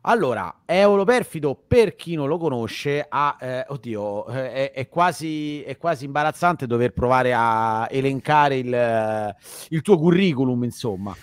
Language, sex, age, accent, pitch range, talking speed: Italian, male, 30-49, native, 125-145 Hz, 140 wpm